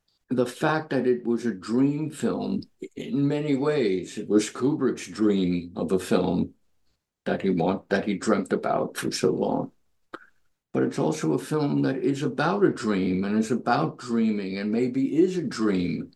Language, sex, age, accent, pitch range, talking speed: English, male, 60-79, American, 95-125 Hz, 175 wpm